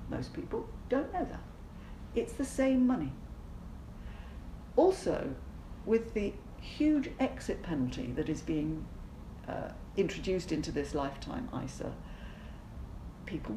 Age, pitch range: 50-69, 155-245 Hz